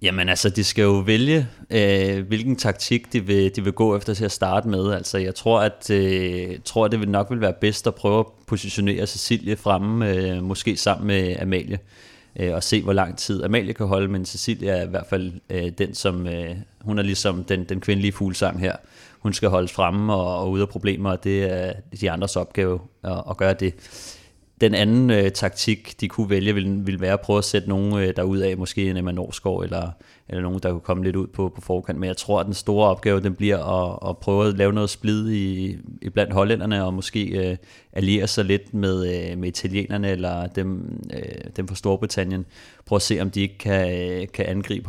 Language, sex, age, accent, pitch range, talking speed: Danish, male, 30-49, native, 95-105 Hz, 220 wpm